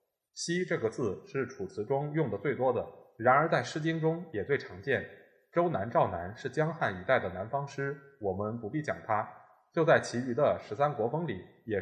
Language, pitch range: Chinese, 125-160 Hz